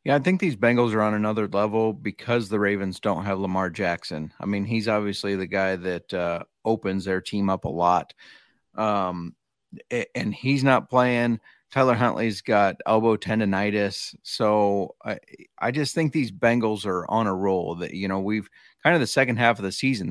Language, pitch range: English, 95-115 Hz